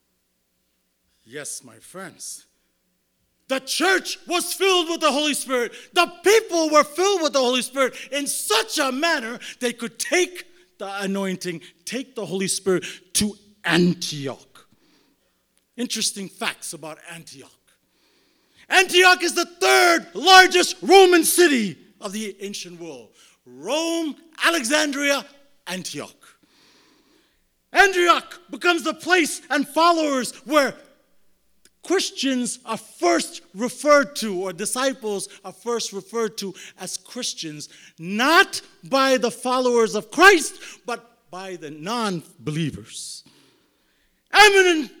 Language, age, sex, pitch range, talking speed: English, 50-69, male, 195-320 Hz, 110 wpm